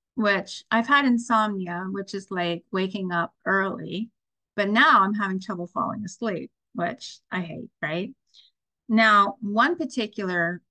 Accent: American